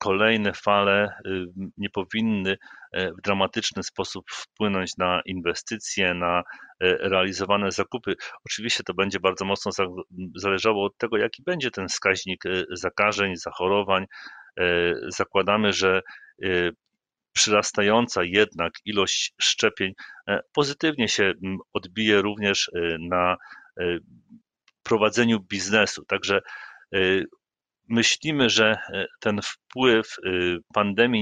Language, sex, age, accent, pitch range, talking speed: Polish, male, 40-59, native, 95-115 Hz, 90 wpm